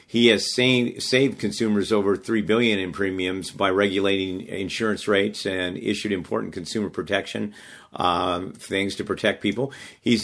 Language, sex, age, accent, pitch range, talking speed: English, male, 50-69, American, 95-110 Hz, 140 wpm